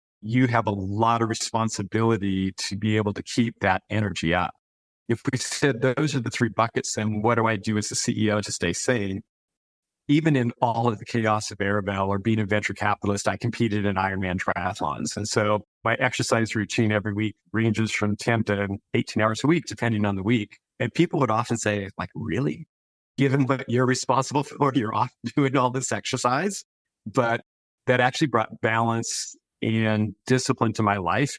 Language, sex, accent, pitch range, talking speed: English, male, American, 105-125 Hz, 185 wpm